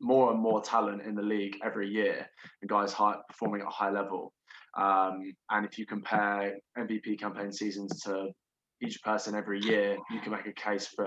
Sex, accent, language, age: male, British, English, 20-39